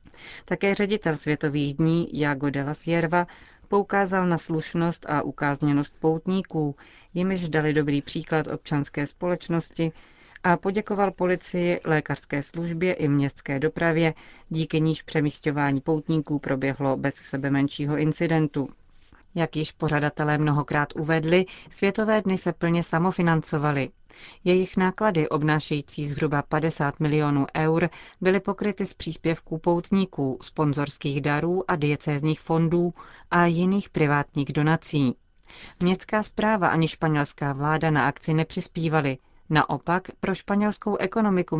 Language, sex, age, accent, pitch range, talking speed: Czech, female, 30-49, native, 145-175 Hz, 115 wpm